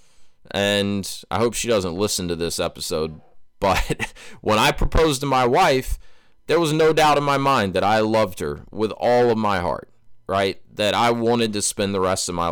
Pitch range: 95-120 Hz